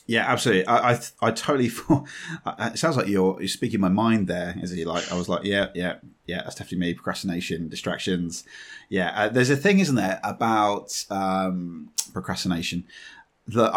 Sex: male